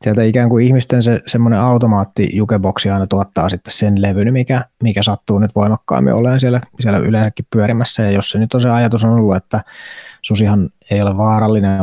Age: 20-39